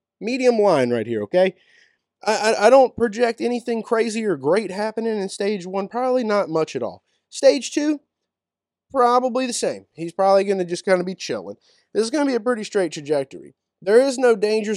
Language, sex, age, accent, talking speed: English, male, 20-39, American, 205 wpm